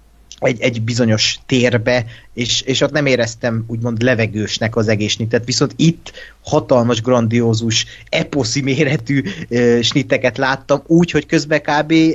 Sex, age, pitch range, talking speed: male, 30-49, 110-135 Hz, 125 wpm